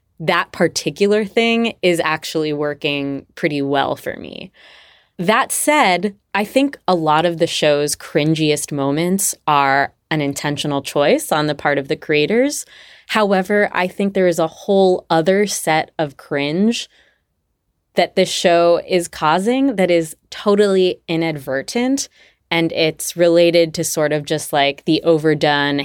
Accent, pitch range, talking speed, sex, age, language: American, 150-190 Hz, 140 wpm, female, 20-39, English